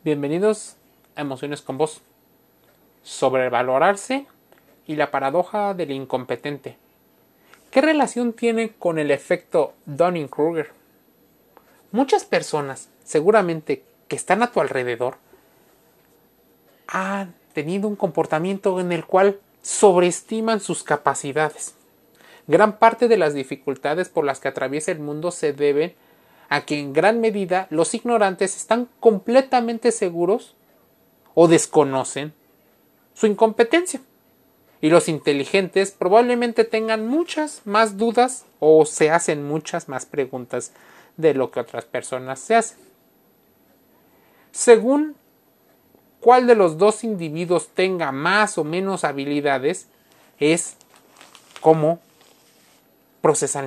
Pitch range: 145-220 Hz